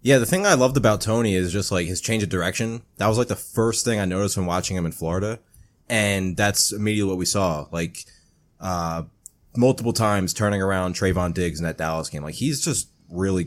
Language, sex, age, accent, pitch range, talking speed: English, male, 20-39, American, 90-115 Hz, 220 wpm